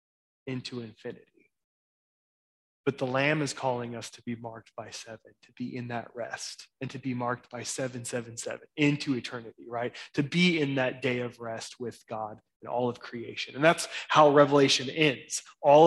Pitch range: 125-155 Hz